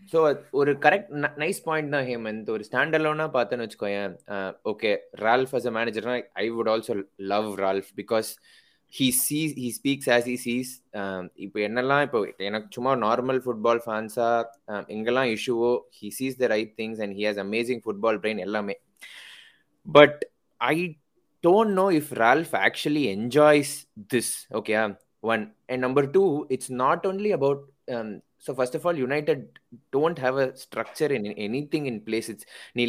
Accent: native